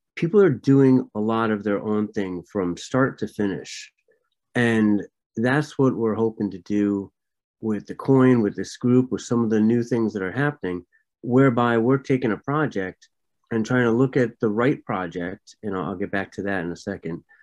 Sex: male